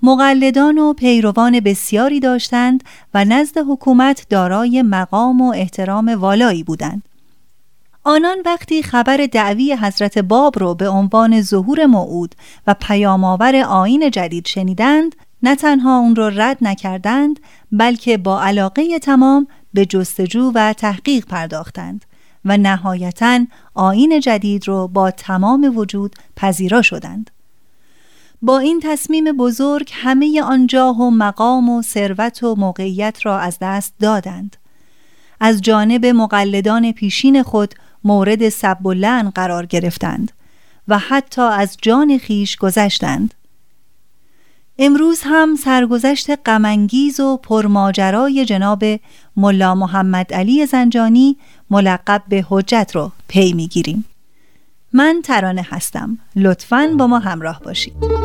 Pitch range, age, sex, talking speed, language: 195-265 Hz, 30-49, female, 115 wpm, Persian